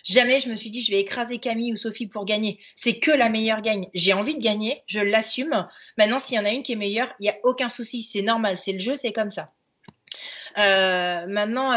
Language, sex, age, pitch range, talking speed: French, female, 30-49, 190-235 Hz, 245 wpm